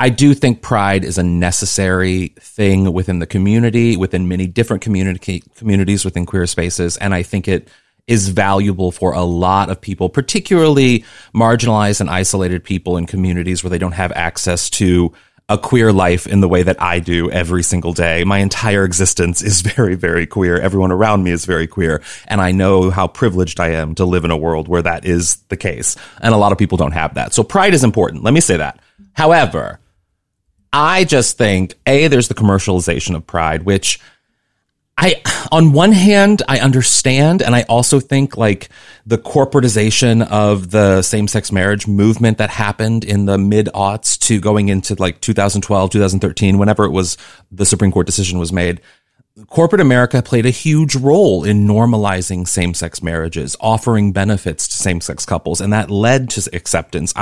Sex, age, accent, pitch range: male, 30-49, American, 90-120 Hz